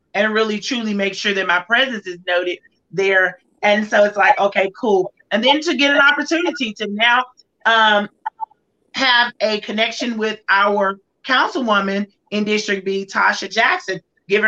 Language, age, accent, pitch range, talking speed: English, 30-49, American, 195-225 Hz, 160 wpm